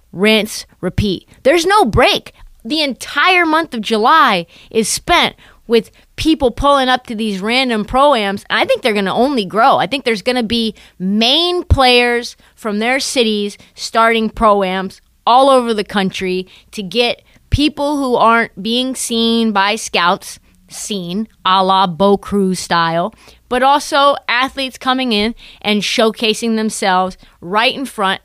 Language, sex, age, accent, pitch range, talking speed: English, female, 30-49, American, 205-275 Hz, 145 wpm